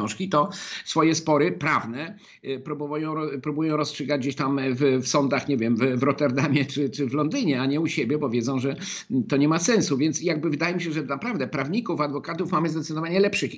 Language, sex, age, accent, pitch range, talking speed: Polish, male, 50-69, native, 140-175 Hz, 195 wpm